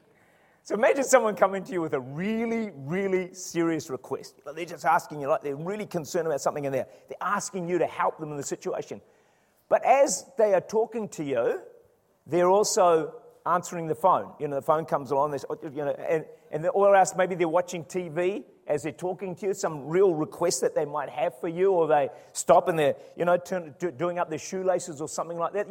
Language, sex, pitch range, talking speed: English, male, 165-225 Hz, 215 wpm